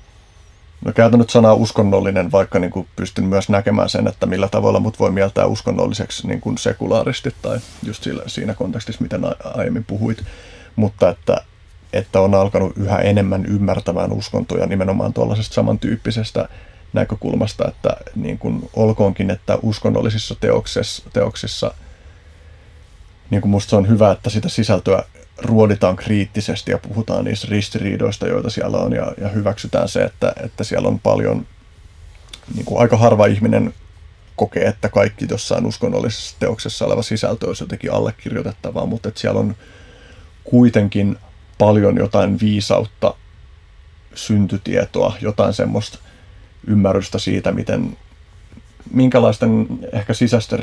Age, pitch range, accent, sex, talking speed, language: 30-49, 95-110 Hz, native, male, 125 wpm, Finnish